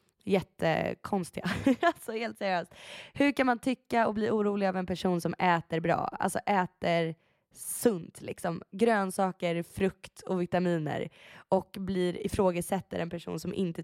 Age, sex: 20-39, female